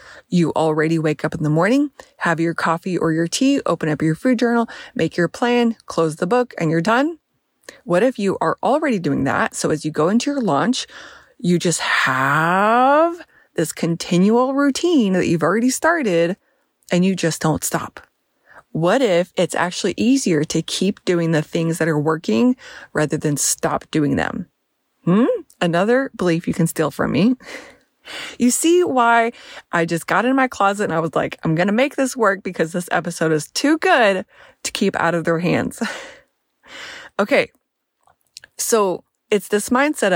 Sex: female